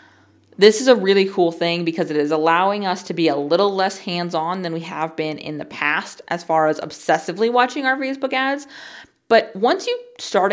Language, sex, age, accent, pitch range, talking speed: English, female, 20-39, American, 165-230 Hz, 205 wpm